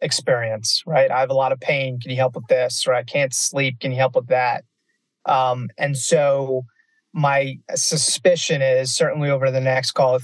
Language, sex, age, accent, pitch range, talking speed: English, male, 30-49, American, 130-150 Hz, 200 wpm